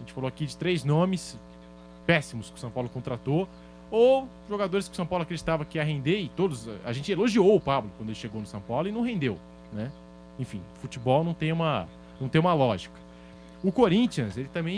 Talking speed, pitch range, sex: 205 wpm, 105-160 Hz, male